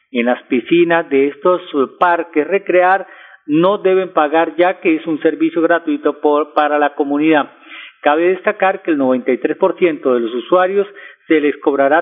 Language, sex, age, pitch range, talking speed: Spanish, male, 40-59, 150-200 Hz, 150 wpm